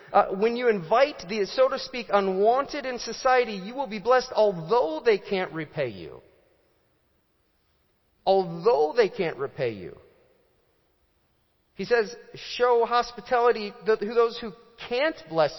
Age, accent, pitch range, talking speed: 40-59, American, 155-225 Hz, 130 wpm